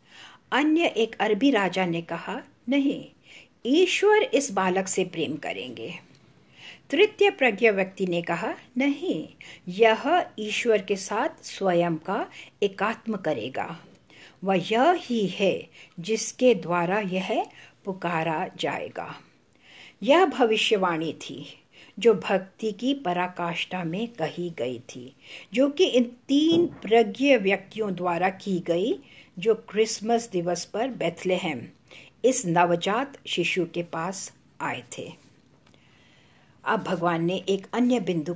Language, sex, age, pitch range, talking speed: English, female, 60-79, 175-235 Hz, 115 wpm